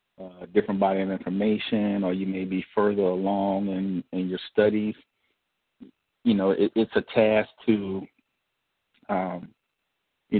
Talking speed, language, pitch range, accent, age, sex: 140 wpm, English, 95-110 Hz, American, 40-59, male